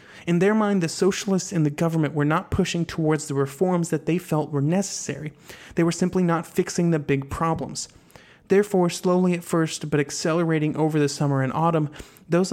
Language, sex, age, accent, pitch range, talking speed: English, male, 30-49, American, 145-180 Hz, 185 wpm